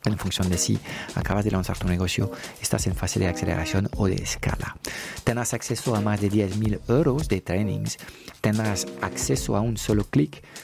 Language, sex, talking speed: Spanish, male, 180 wpm